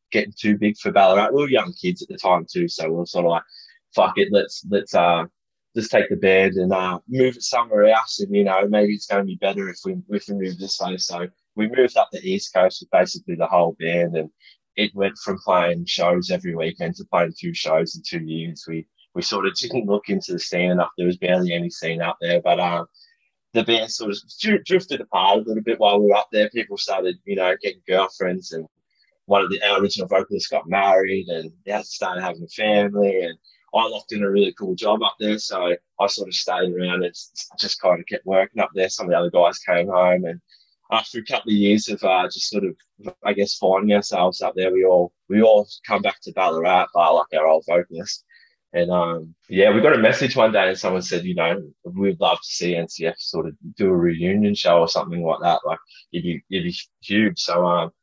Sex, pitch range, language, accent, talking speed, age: male, 90-115 Hz, English, Australian, 235 wpm, 20-39